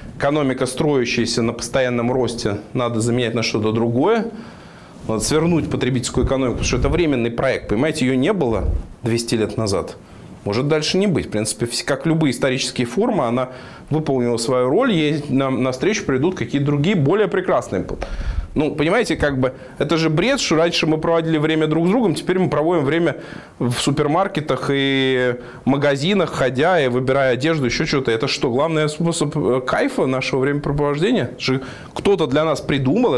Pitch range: 125-170 Hz